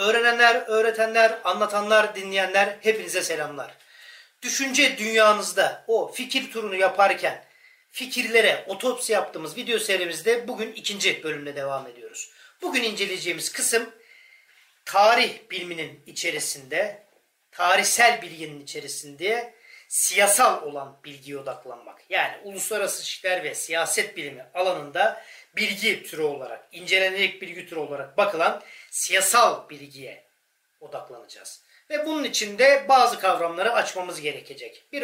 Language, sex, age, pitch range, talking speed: Turkish, male, 40-59, 180-255 Hz, 105 wpm